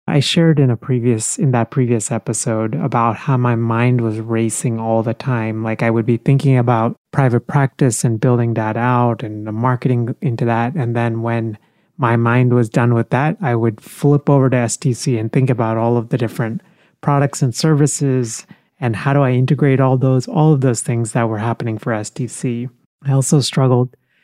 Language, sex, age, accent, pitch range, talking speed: English, male, 30-49, American, 115-140 Hz, 195 wpm